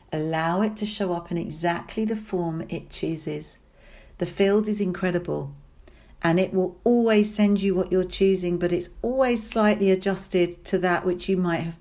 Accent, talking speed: British, 180 wpm